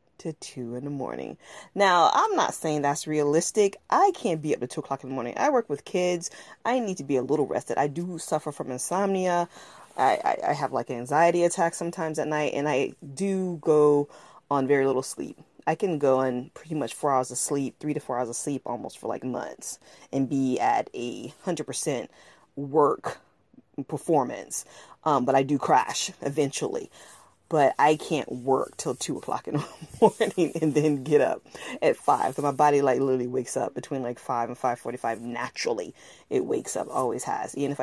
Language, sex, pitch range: English, female, 135-160 Hz